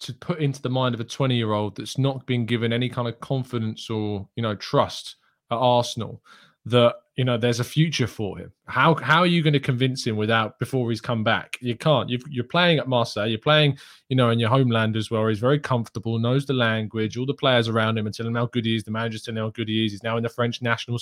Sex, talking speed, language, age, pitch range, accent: male, 260 wpm, English, 20-39, 115-140 Hz, British